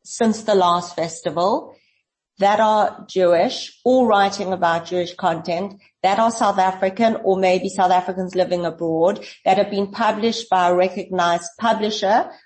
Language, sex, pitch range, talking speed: English, female, 180-215 Hz, 145 wpm